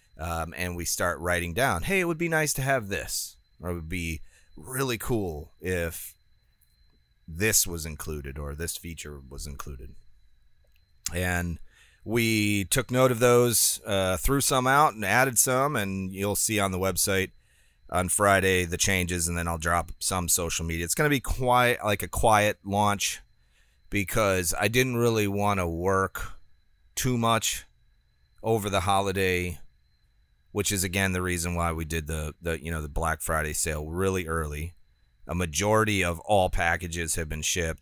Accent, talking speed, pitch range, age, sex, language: American, 170 wpm, 75-100 Hz, 30-49, male, English